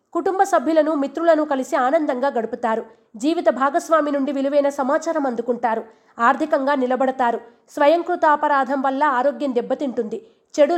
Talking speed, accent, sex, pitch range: 110 wpm, native, female, 255-310 Hz